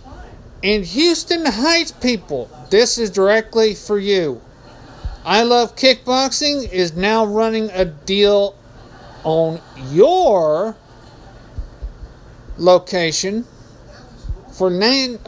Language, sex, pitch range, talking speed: English, male, 130-190 Hz, 85 wpm